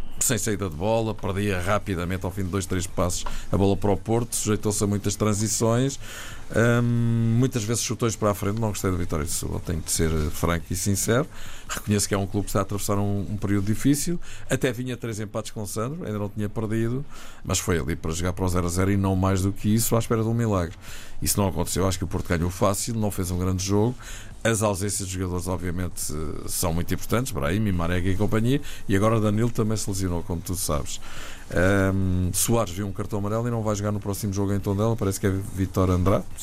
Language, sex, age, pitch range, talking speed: Portuguese, male, 50-69, 95-110 Hz, 235 wpm